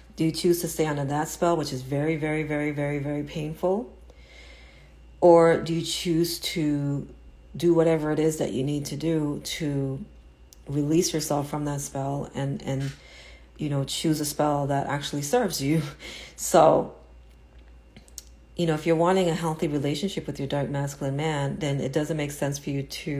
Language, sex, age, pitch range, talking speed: English, female, 40-59, 130-160 Hz, 180 wpm